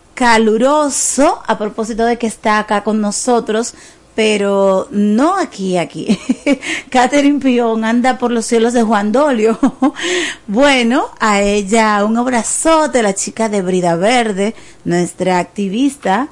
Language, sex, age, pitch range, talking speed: Spanish, female, 30-49, 195-250 Hz, 130 wpm